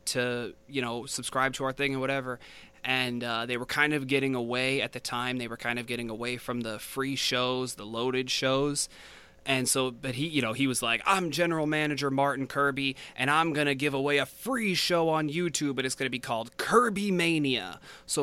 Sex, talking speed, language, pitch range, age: male, 220 wpm, English, 120-140 Hz, 20-39